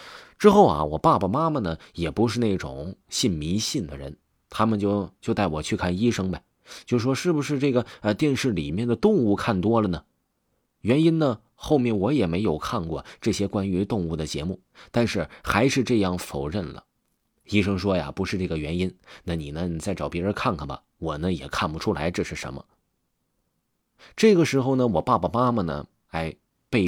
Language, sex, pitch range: Chinese, male, 90-150 Hz